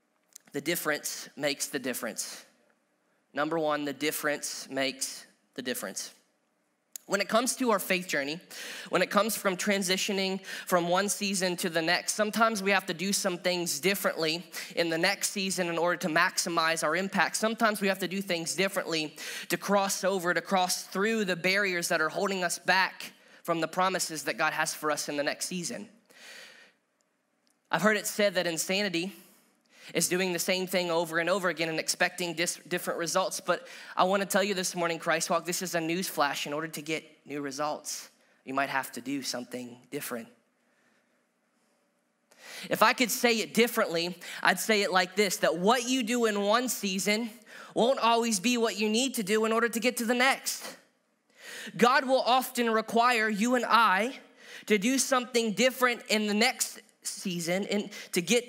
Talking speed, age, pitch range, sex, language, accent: 185 wpm, 20-39, 170-220 Hz, male, English, American